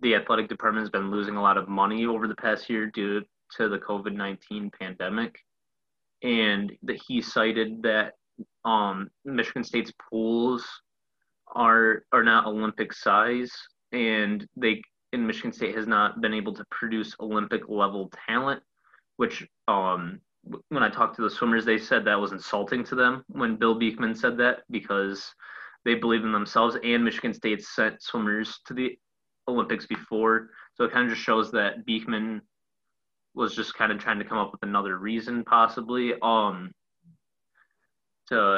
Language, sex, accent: English, male, American